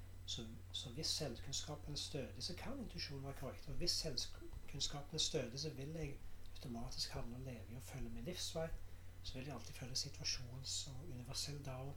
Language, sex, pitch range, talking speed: English, male, 90-135 Hz, 185 wpm